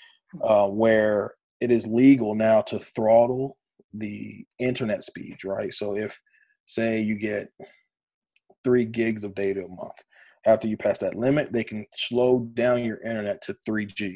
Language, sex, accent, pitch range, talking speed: English, male, American, 105-135 Hz, 155 wpm